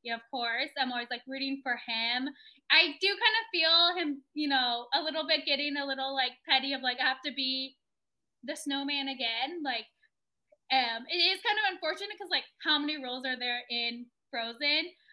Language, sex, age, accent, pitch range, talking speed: English, female, 10-29, American, 245-310 Hz, 200 wpm